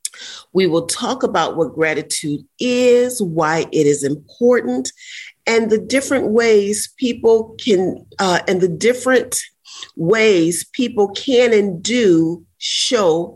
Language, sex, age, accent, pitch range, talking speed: English, female, 40-59, American, 160-220 Hz, 120 wpm